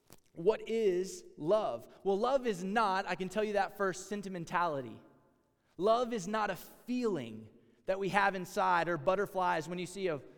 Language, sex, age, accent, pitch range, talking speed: English, male, 20-39, American, 170-215 Hz, 170 wpm